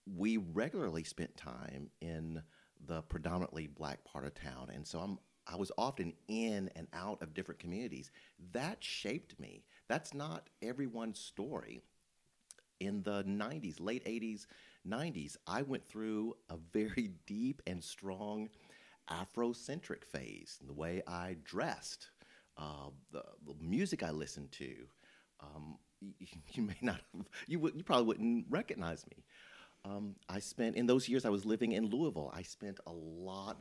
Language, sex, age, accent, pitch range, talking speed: English, male, 40-59, American, 80-115 Hz, 150 wpm